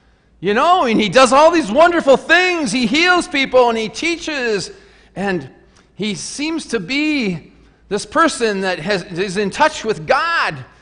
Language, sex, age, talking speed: English, male, 40-59, 155 wpm